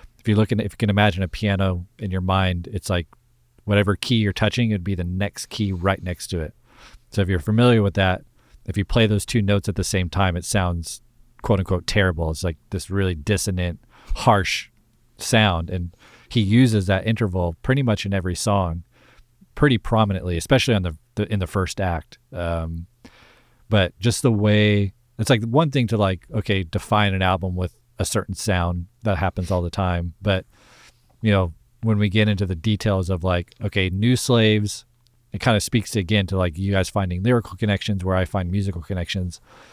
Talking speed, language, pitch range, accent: 195 wpm, English, 95-115 Hz, American